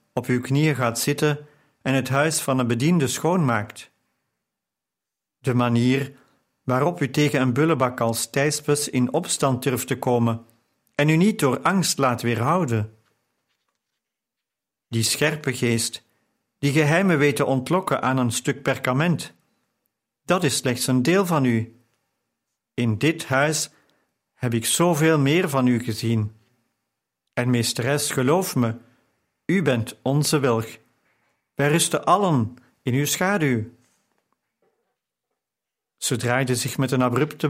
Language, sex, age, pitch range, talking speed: Dutch, male, 50-69, 120-150 Hz, 130 wpm